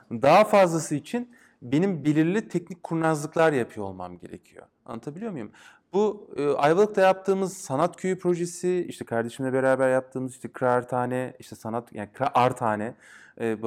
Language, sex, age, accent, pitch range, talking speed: Turkish, male, 30-49, native, 125-175 Hz, 150 wpm